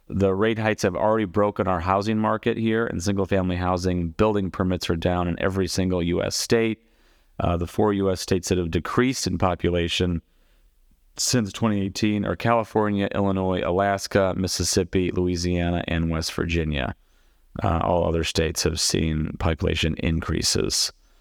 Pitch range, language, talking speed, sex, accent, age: 85-105 Hz, English, 155 wpm, male, American, 30-49